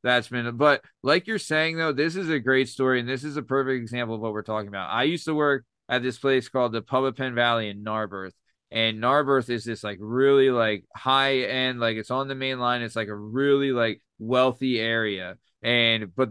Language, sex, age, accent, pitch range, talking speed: English, male, 20-39, American, 115-135 Hz, 230 wpm